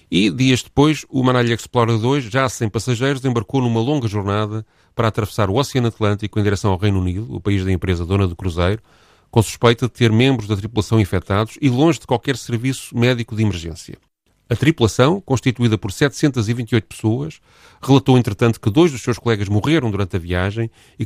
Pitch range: 100-125 Hz